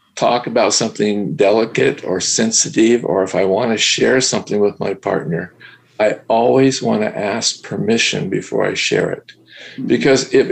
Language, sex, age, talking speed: English, male, 50-69, 160 wpm